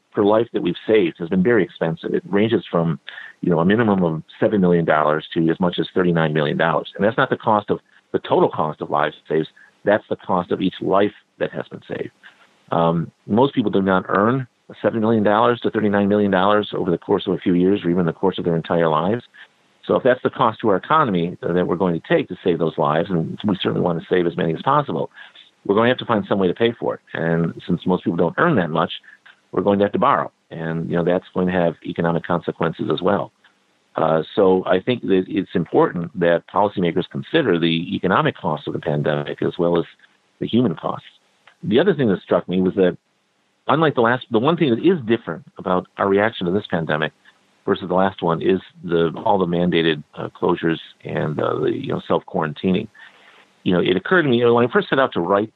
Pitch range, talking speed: 85-100 Hz, 235 wpm